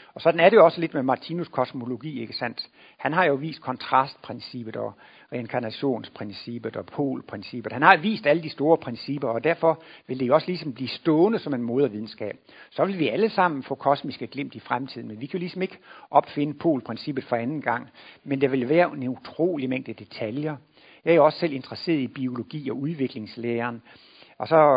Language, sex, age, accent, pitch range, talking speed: Danish, male, 60-79, native, 125-155 Hz, 195 wpm